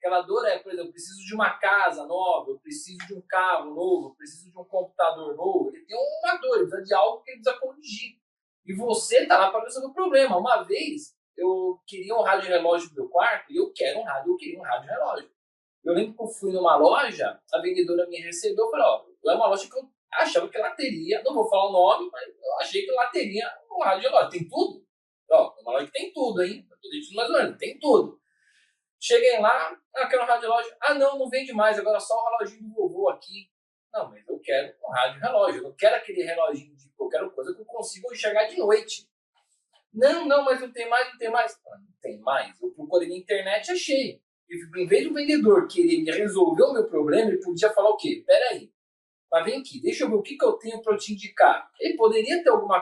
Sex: male